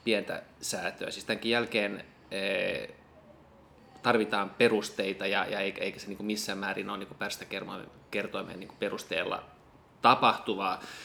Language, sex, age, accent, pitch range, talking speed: Finnish, male, 20-39, native, 105-130 Hz, 90 wpm